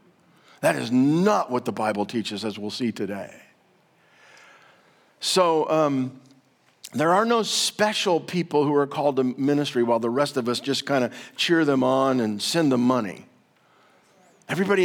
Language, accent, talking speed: English, American, 160 wpm